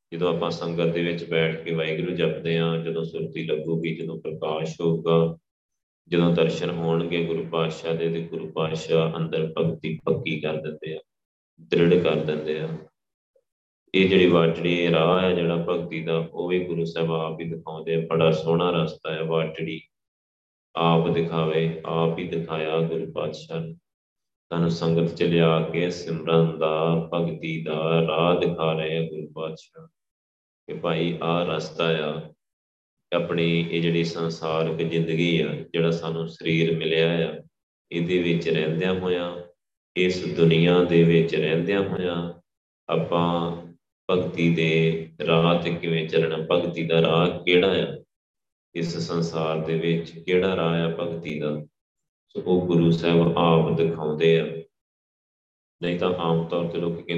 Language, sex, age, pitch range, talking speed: Punjabi, male, 30-49, 80-85 Hz, 115 wpm